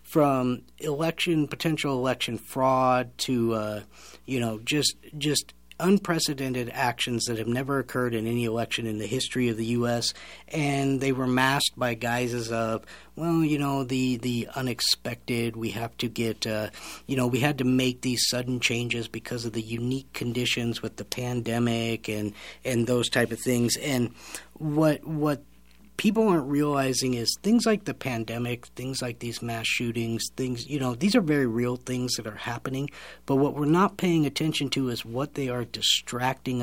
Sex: male